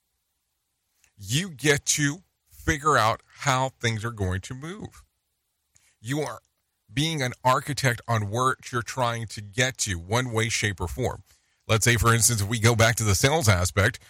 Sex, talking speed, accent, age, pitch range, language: male, 170 wpm, American, 40-59, 100-145 Hz, English